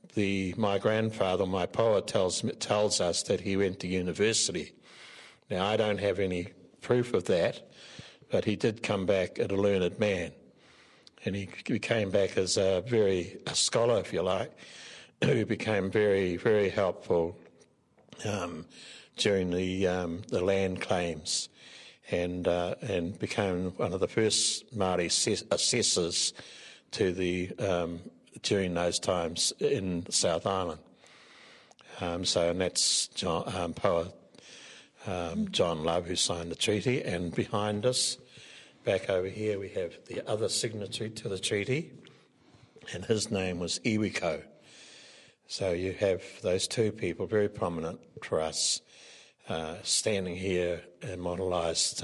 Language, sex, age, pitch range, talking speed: English, male, 60-79, 90-105 Hz, 140 wpm